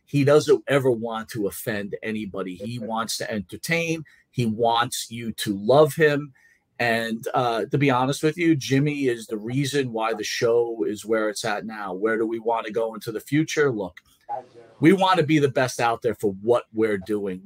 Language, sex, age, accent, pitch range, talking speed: English, male, 40-59, American, 115-150 Hz, 200 wpm